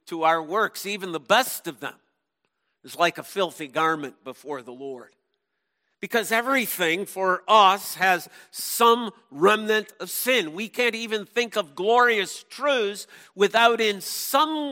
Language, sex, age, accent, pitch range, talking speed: English, male, 50-69, American, 175-230 Hz, 145 wpm